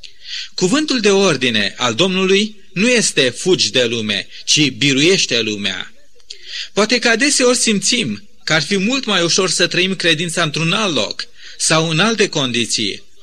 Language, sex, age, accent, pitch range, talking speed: Romanian, male, 30-49, native, 155-205 Hz, 150 wpm